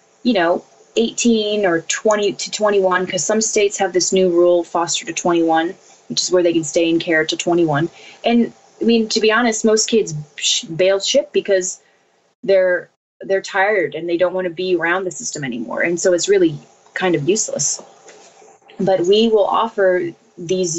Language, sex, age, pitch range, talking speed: English, female, 20-39, 175-200 Hz, 185 wpm